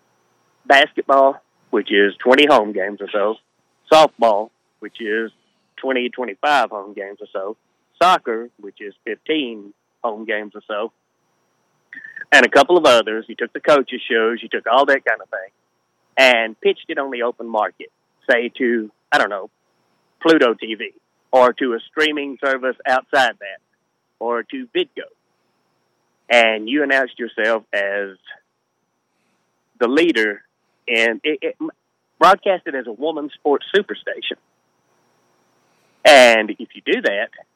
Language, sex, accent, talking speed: English, male, American, 140 wpm